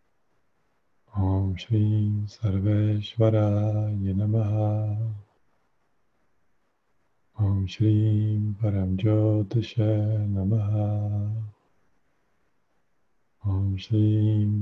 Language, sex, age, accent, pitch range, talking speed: Czech, male, 50-69, native, 100-110 Hz, 45 wpm